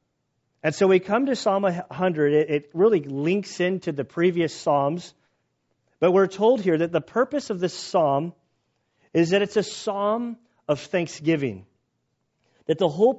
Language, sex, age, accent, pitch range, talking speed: English, male, 40-59, American, 145-190 Hz, 155 wpm